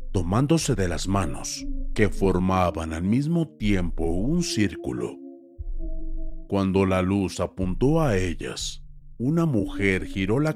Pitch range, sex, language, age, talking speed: 85-125 Hz, male, Spanish, 40-59, 120 wpm